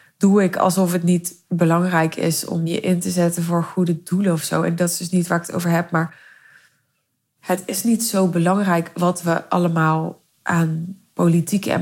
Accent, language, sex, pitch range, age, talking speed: Dutch, Dutch, female, 160-180 Hz, 20-39, 200 wpm